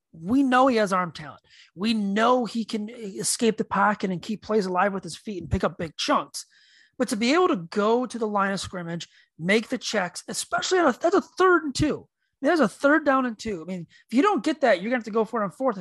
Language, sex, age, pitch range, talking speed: English, male, 30-49, 185-250 Hz, 260 wpm